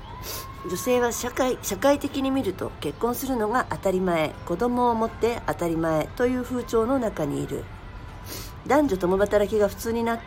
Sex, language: female, Japanese